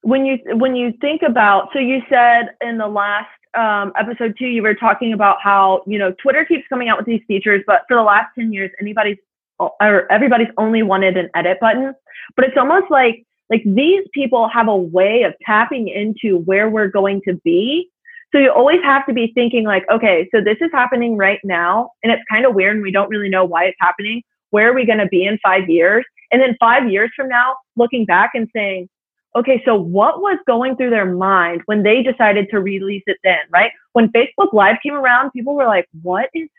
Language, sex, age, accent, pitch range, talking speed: English, female, 20-39, American, 195-245 Hz, 220 wpm